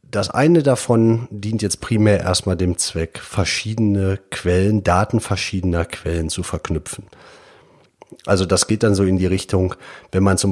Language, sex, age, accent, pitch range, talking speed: German, male, 40-59, German, 90-105 Hz, 155 wpm